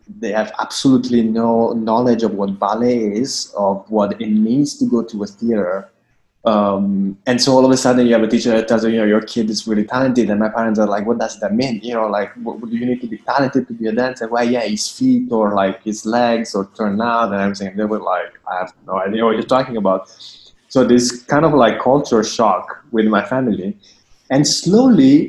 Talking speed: 235 wpm